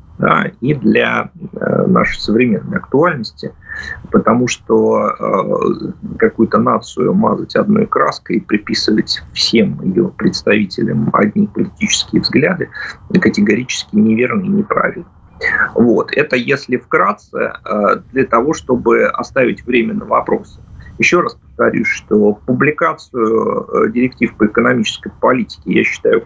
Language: Russian